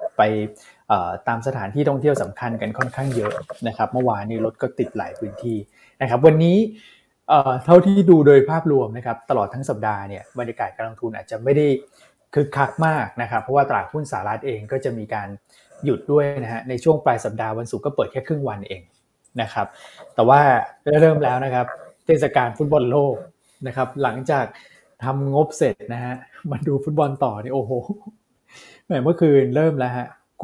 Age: 20-39